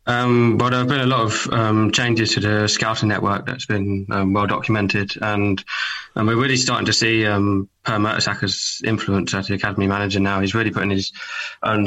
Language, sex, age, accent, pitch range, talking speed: English, male, 20-39, British, 95-105 Hz, 200 wpm